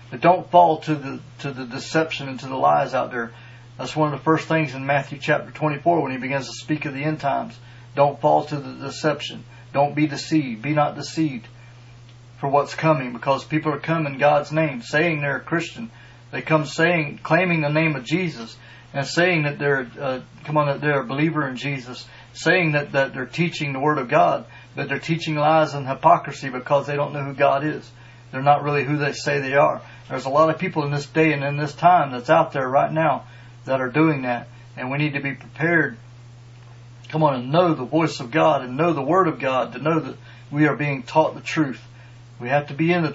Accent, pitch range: American, 125-155 Hz